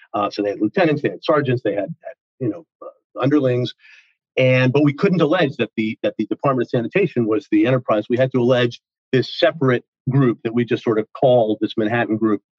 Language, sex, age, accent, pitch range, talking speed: English, male, 50-69, American, 115-145 Hz, 220 wpm